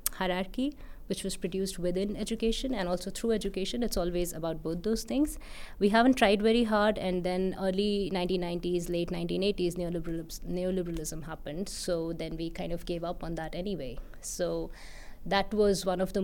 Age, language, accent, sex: 20-39, English, Indian, female